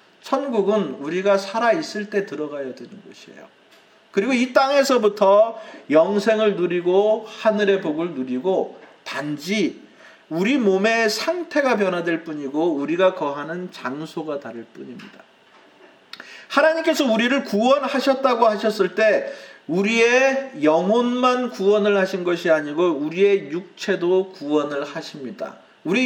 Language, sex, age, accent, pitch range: Korean, male, 40-59, native, 170-225 Hz